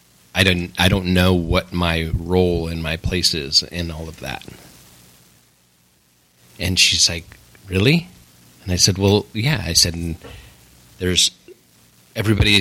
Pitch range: 85-100 Hz